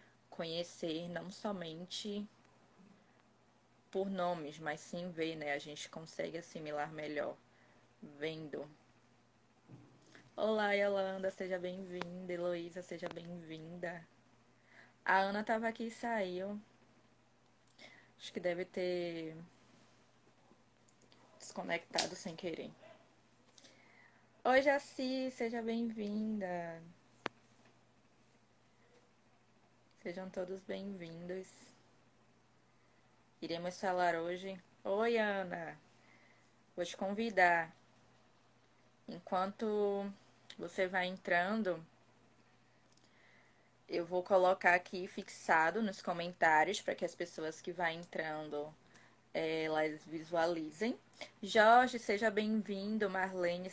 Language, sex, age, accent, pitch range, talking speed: Portuguese, female, 20-39, Brazilian, 160-195 Hz, 80 wpm